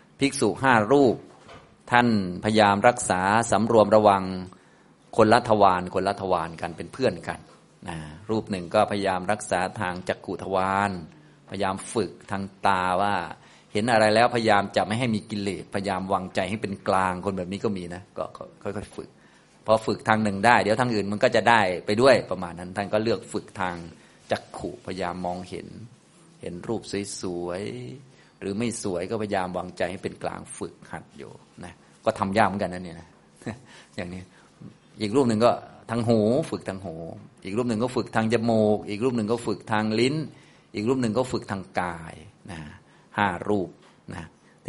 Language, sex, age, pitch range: Thai, male, 30-49, 95-115 Hz